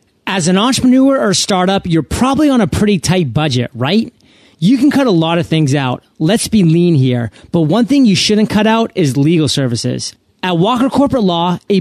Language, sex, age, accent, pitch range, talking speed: English, male, 30-49, American, 155-210 Hz, 205 wpm